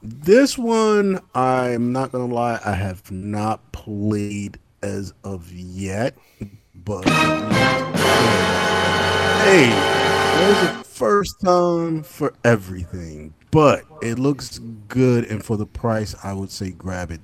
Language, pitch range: English, 100-125 Hz